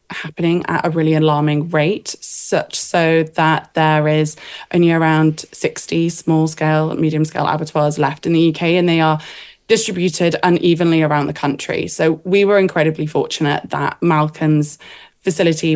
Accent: British